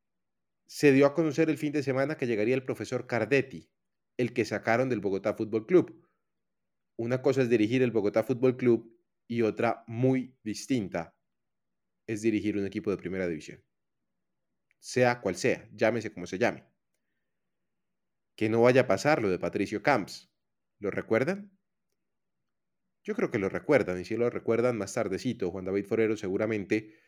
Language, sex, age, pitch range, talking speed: Spanish, male, 30-49, 105-130 Hz, 160 wpm